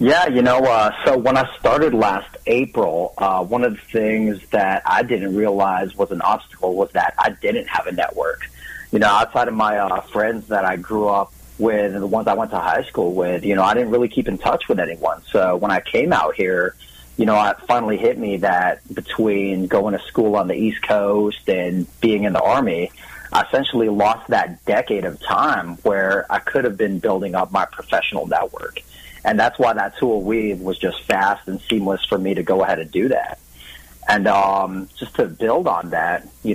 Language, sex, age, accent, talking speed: English, male, 30-49, American, 215 wpm